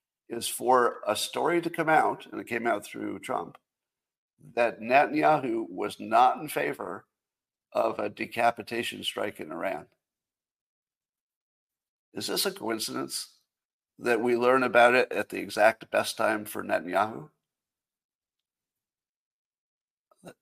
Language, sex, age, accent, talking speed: English, male, 50-69, American, 125 wpm